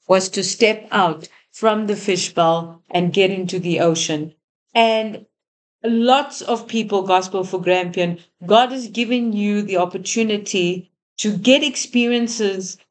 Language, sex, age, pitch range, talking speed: English, female, 50-69, 185-230 Hz, 130 wpm